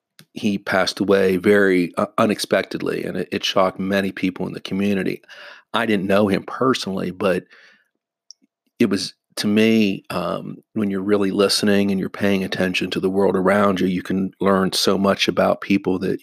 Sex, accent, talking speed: male, American, 170 wpm